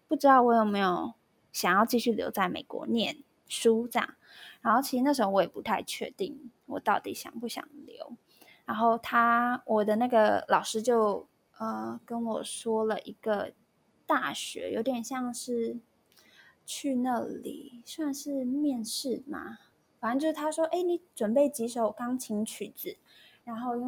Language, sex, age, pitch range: Chinese, female, 20-39, 220-255 Hz